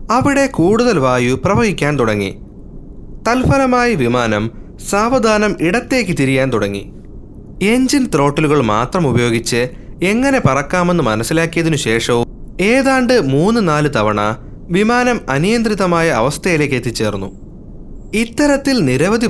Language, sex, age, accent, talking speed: Malayalam, male, 30-49, native, 90 wpm